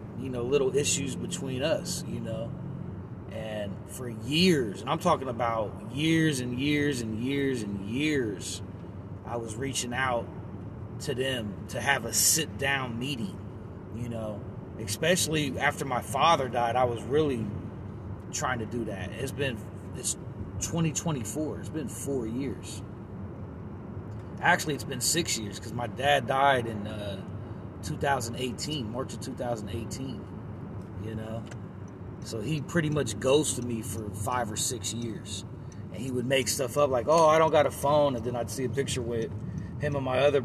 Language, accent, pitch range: English, American, 105-140 Hz